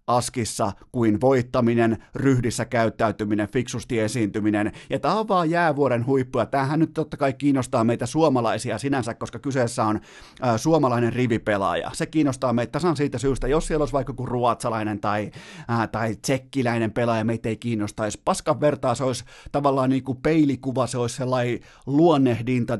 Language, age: Finnish, 30-49